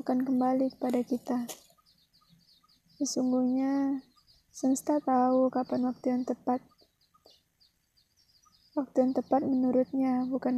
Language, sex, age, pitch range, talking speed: Indonesian, female, 20-39, 250-270 Hz, 90 wpm